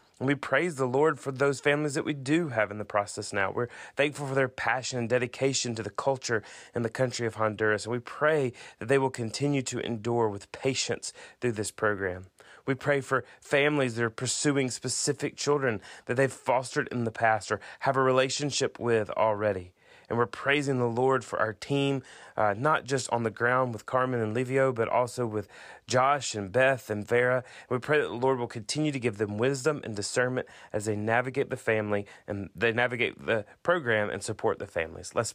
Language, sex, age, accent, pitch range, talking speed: English, male, 30-49, American, 110-135 Hz, 205 wpm